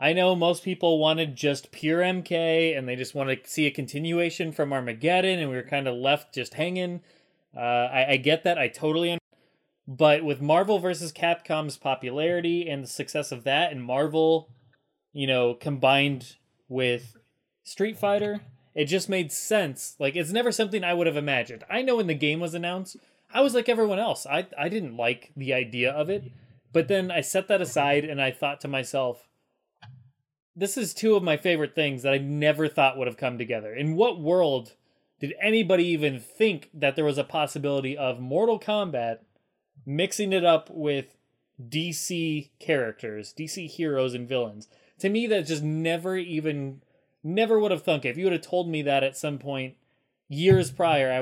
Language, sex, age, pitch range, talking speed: English, male, 20-39, 130-170 Hz, 185 wpm